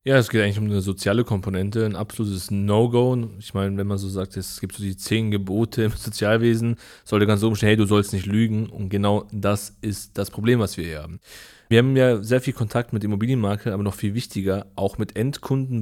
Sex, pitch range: male, 105-135 Hz